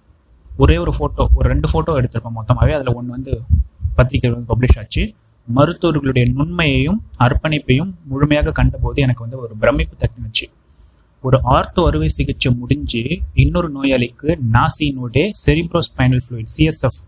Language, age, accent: Tamil, 20-39, native